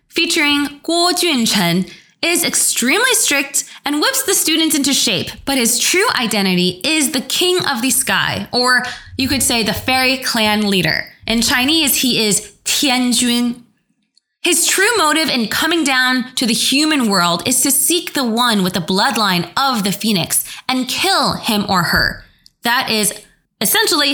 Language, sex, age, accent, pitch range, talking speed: English, female, 20-39, American, 195-290 Hz, 160 wpm